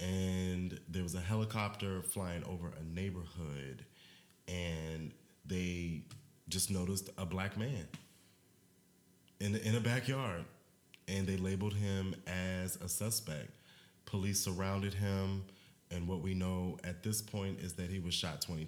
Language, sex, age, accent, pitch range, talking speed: English, male, 30-49, American, 85-100 Hz, 140 wpm